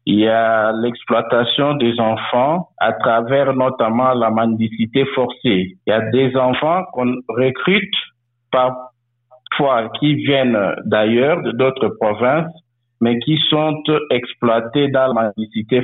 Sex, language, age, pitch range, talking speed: male, French, 50-69, 115-135 Hz, 125 wpm